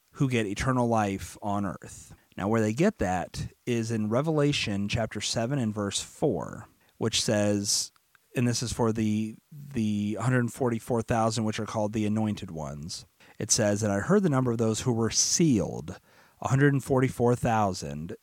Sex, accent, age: male, American, 30-49